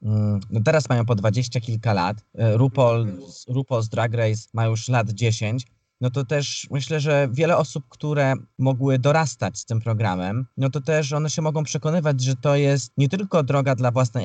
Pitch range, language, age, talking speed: 115-150 Hz, Polish, 20-39, 185 wpm